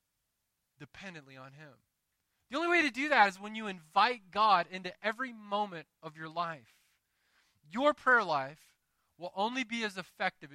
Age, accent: 20-39, American